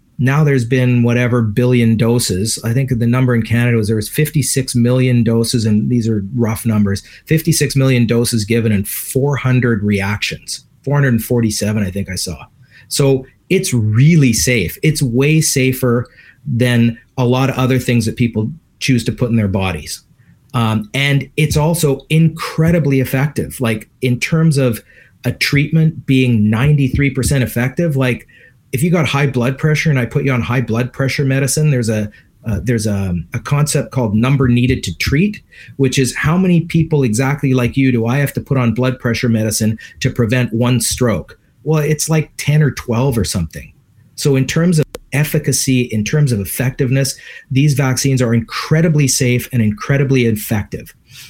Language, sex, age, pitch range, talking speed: English, male, 30-49, 115-140 Hz, 170 wpm